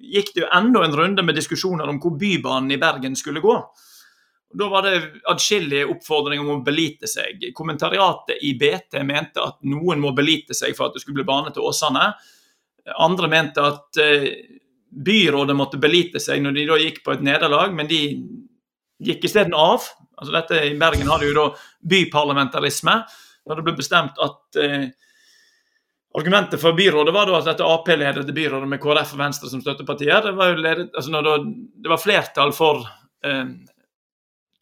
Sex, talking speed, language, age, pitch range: male, 160 wpm, English, 30-49, 145-175 Hz